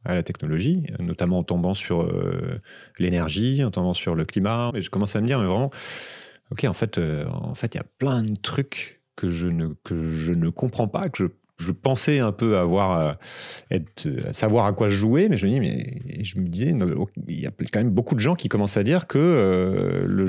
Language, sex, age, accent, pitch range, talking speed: French, male, 30-49, French, 90-115 Hz, 220 wpm